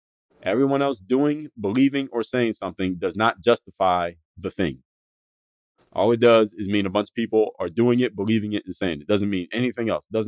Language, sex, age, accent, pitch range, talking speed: English, male, 30-49, American, 100-120 Hz, 200 wpm